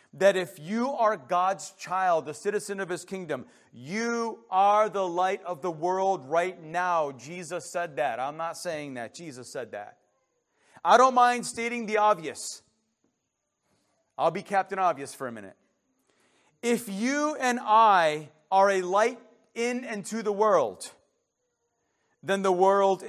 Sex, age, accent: male, 40-59, American